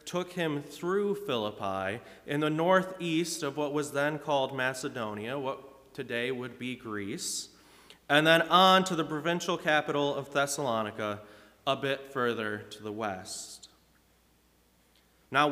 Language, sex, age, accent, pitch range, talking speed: English, male, 30-49, American, 125-165 Hz, 130 wpm